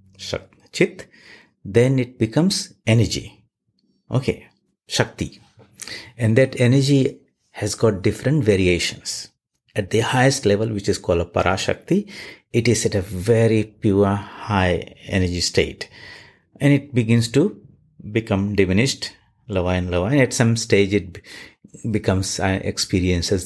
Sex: male